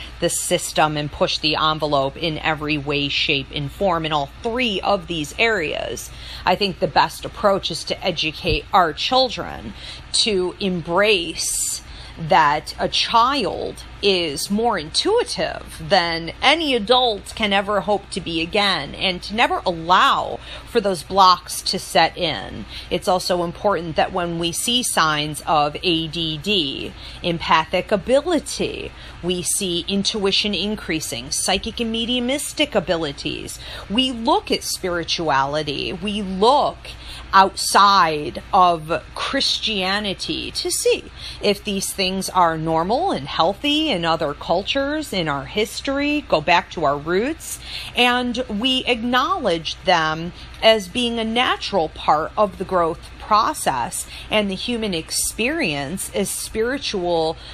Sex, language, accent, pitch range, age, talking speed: female, English, American, 165-225 Hz, 40-59, 130 wpm